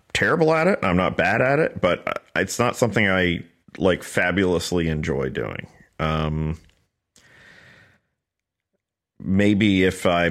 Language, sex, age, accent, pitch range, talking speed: English, male, 40-59, American, 80-100 Hz, 130 wpm